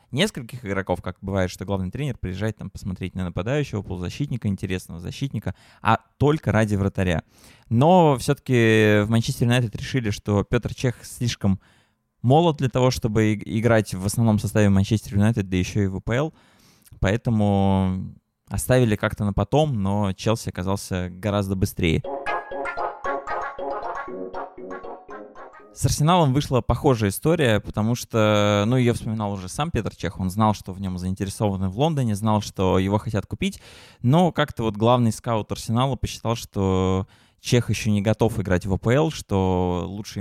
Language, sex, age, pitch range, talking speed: Russian, male, 20-39, 95-120 Hz, 145 wpm